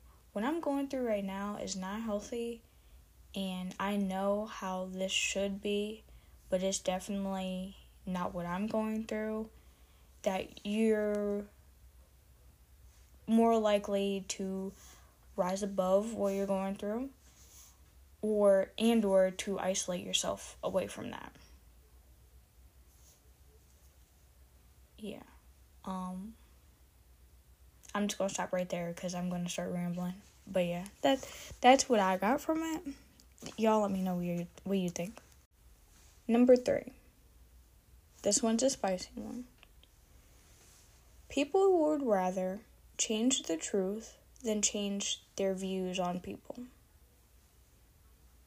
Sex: female